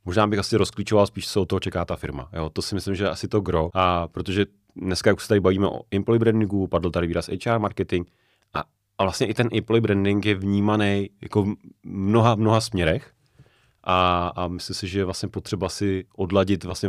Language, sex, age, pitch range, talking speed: Czech, male, 30-49, 95-115 Hz, 215 wpm